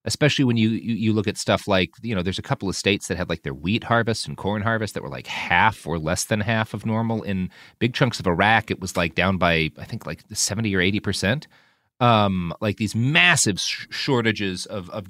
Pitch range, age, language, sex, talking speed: 95-115 Hz, 30-49, English, male, 235 wpm